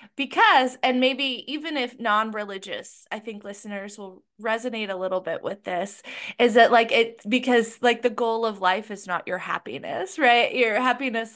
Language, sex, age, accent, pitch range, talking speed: English, female, 20-39, American, 205-255 Hz, 175 wpm